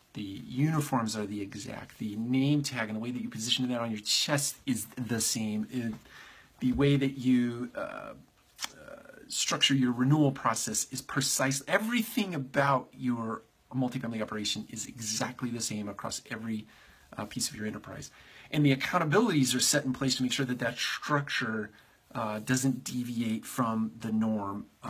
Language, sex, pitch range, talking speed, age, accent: English, male, 110-135 Hz, 165 wpm, 40-59, American